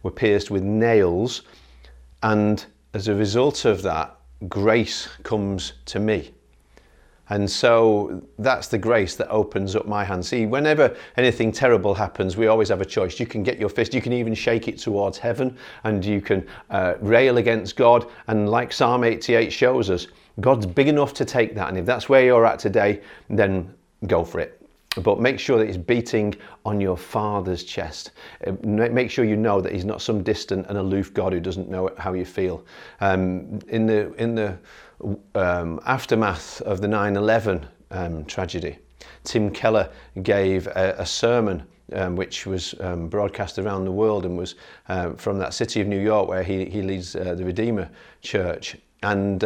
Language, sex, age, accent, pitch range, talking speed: English, male, 40-59, British, 95-110 Hz, 180 wpm